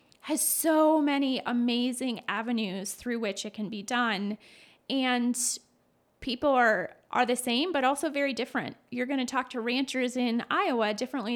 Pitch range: 230-275 Hz